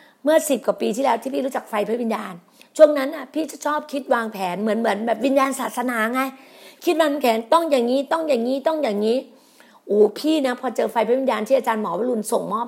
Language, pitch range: Thai, 230-295 Hz